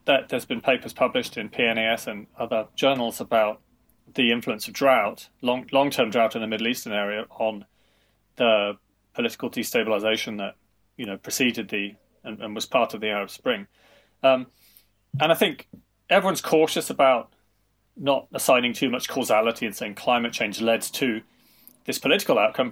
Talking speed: 160 wpm